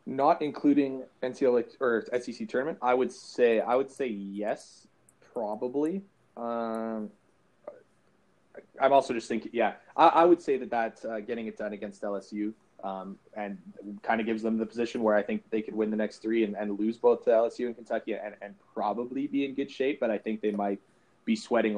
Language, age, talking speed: English, 20-39, 195 wpm